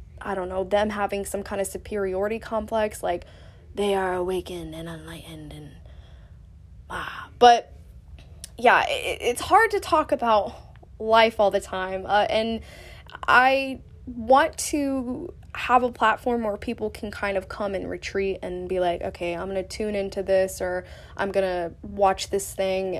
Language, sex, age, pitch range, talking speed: English, female, 10-29, 185-235 Hz, 165 wpm